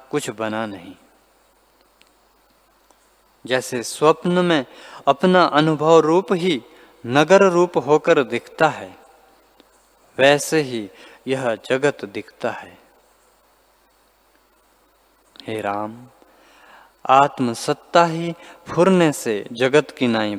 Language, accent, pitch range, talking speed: Hindi, native, 125-175 Hz, 90 wpm